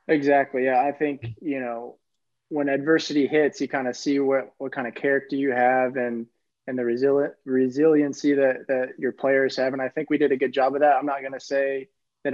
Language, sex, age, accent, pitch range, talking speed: English, male, 20-39, American, 130-145 Hz, 225 wpm